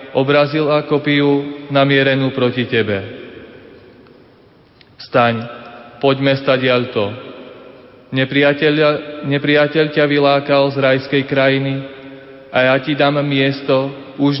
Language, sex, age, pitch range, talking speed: Slovak, male, 30-49, 130-145 Hz, 95 wpm